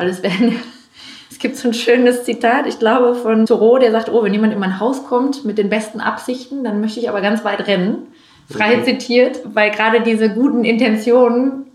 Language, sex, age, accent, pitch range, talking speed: German, female, 30-49, German, 200-235 Hz, 200 wpm